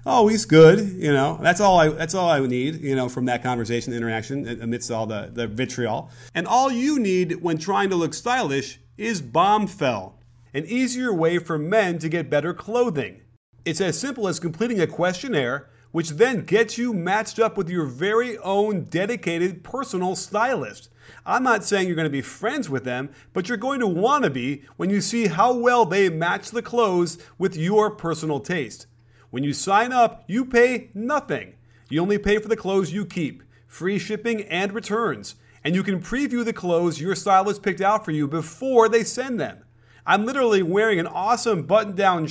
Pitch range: 140-215 Hz